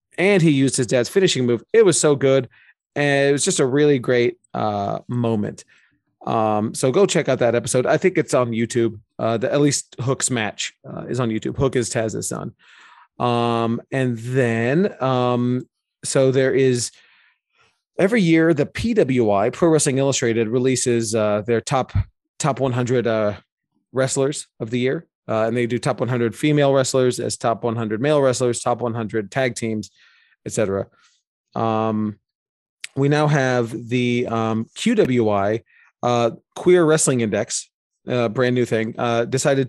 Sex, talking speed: male, 160 wpm